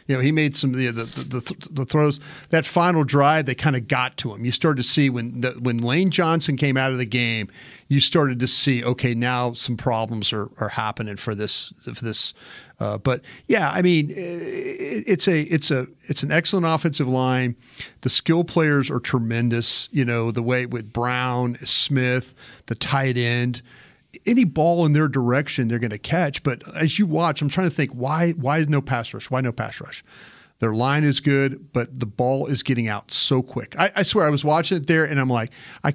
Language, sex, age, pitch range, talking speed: English, male, 40-59, 125-155 Hz, 215 wpm